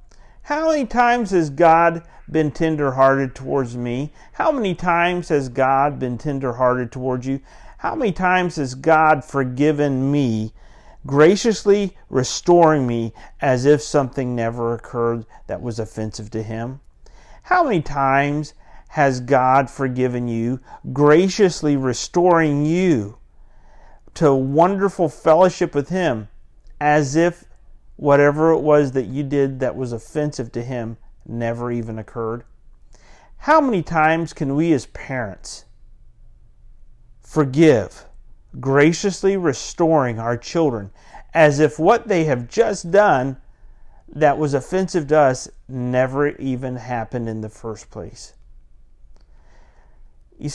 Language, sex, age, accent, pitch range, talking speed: English, male, 50-69, American, 120-160 Hz, 120 wpm